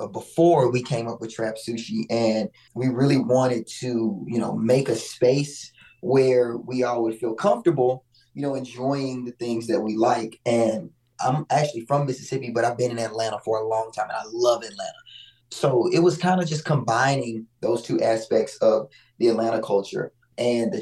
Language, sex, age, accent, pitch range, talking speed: English, male, 20-39, American, 115-145 Hz, 185 wpm